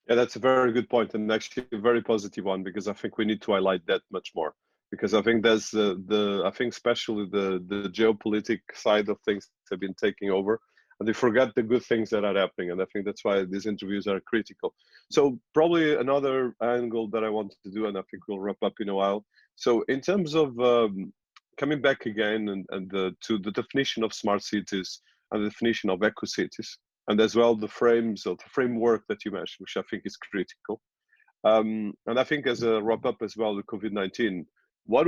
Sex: male